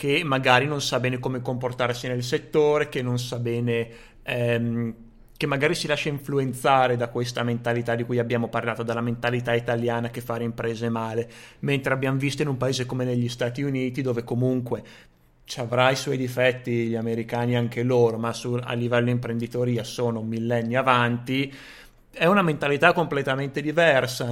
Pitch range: 120-135 Hz